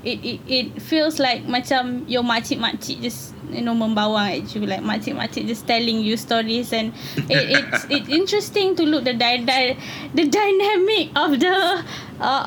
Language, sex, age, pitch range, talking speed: English, female, 20-39, 200-270 Hz, 175 wpm